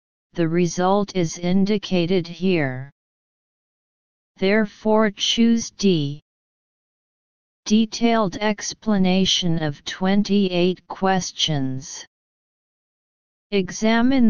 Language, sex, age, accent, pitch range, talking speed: English, female, 40-59, American, 160-200 Hz, 60 wpm